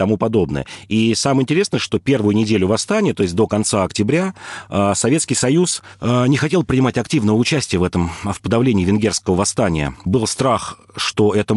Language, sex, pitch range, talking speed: Russian, male, 95-120 Hz, 160 wpm